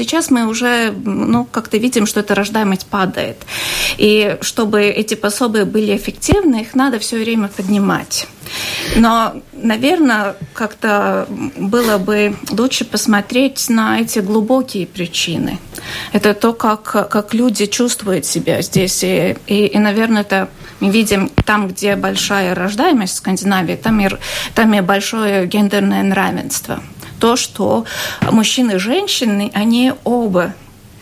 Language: Russian